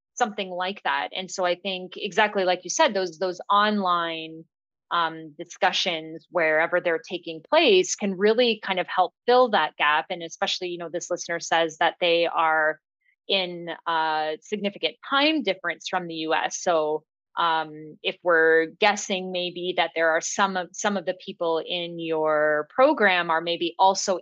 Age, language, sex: 30-49, English, female